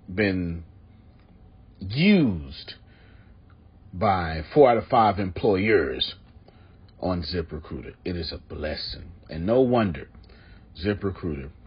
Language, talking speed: English, 95 wpm